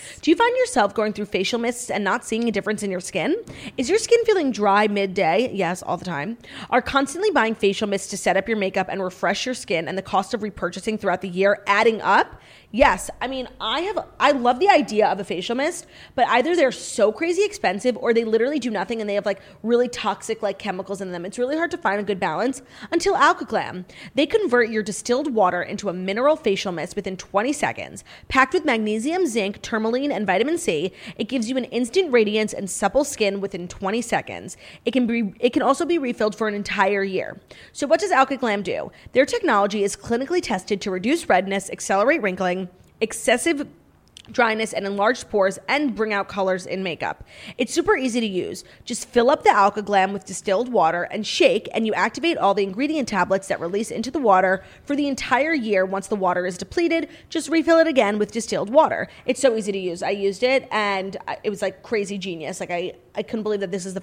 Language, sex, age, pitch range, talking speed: English, female, 30-49, 195-260 Hz, 220 wpm